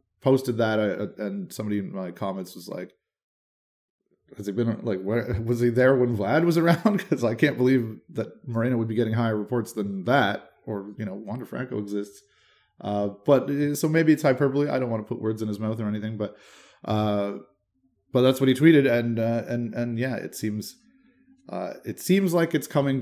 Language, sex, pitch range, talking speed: English, male, 105-130 Hz, 200 wpm